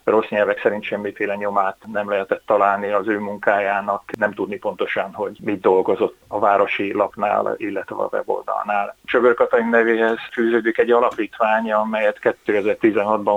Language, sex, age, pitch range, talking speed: Hungarian, male, 30-49, 105-130 Hz, 135 wpm